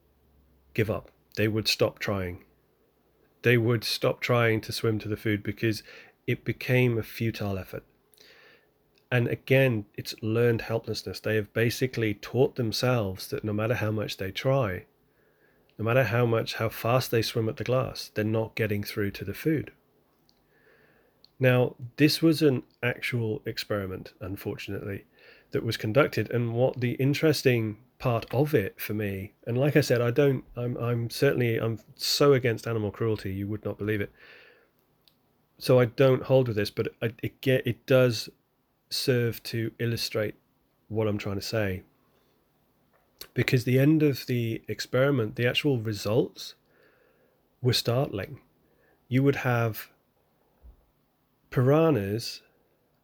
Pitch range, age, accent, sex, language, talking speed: 105-130 Hz, 30-49, British, male, English, 145 wpm